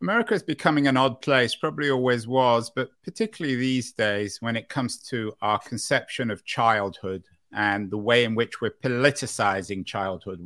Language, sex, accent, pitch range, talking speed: English, male, British, 105-130 Hz, 165 wpm